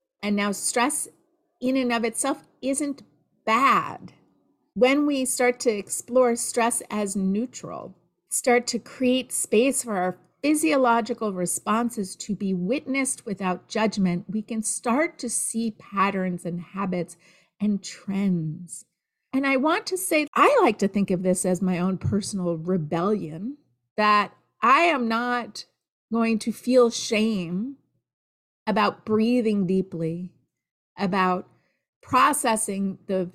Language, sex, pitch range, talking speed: English, female, 180-240 Hz, 125 wpm